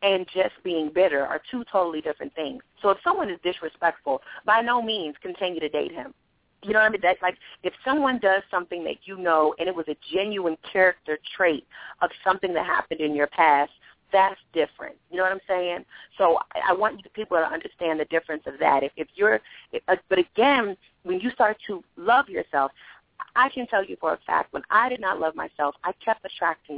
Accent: American